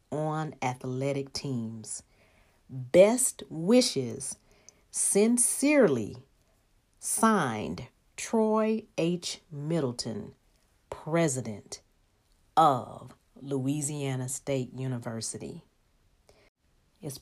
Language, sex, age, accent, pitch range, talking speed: English, female, 40-59, American, 130-180 Hz, 55 wpm